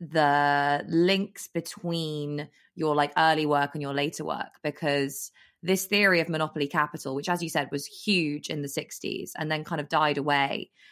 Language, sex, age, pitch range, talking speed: English, female, 20-39, 140-155 Hz, 175 wpm